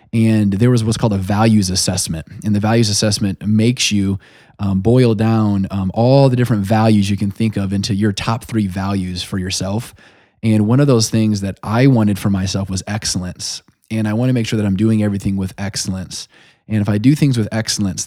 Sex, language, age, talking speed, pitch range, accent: male, English, 20-39, 215 wpm, 100-115 Hz, American